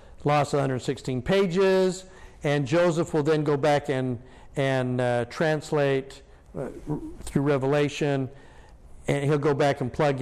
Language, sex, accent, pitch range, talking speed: English, male, American, 135-190 Hz, 130 wpm